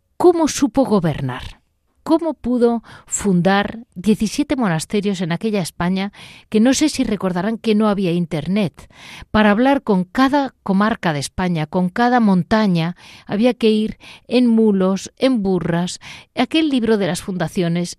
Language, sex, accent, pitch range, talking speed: Spanish, female, Spanish, 165-235 Hz, 140 wpm